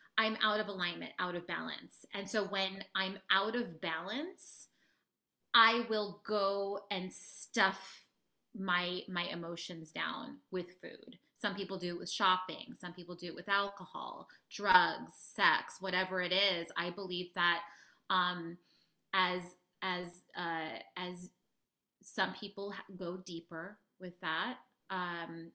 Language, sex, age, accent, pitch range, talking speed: English, female, 30-49, American, 175-200 Hz, 135 wpm